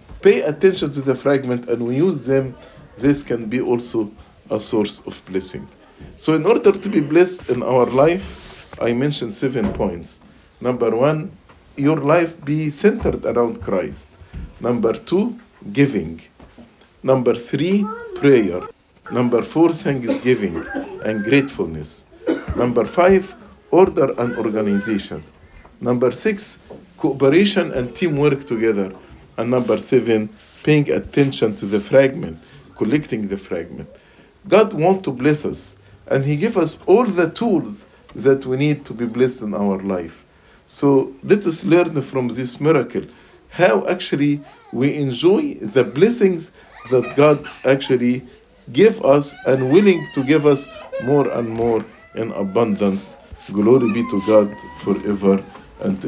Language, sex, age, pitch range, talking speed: English, male, 50-69, 115-165 Hz, 135 wpm